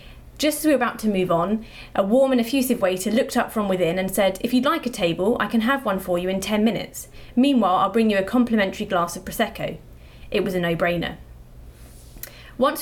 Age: 30-49